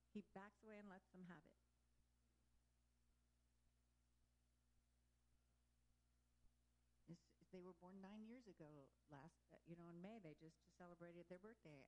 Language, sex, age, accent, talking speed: English, female, 50-69, American, 125 wpm